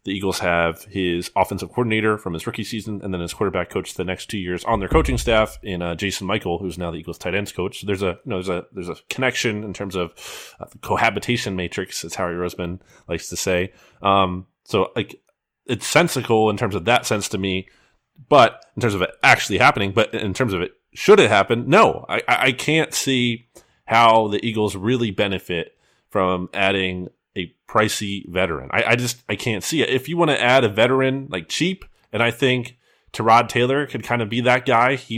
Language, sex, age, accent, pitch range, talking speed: English, male, 30-49, American, 95-125 Hz, 215 wpm